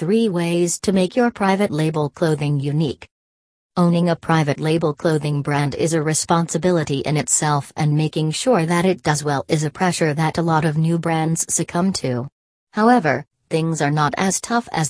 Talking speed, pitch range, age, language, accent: 180 wpm, 150-180 Hz, 40-59, English, American